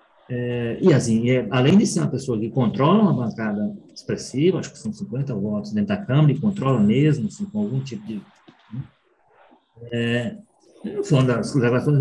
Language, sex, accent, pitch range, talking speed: Portuguese, male, Brazilian, 125-170 Hz, 180 wpm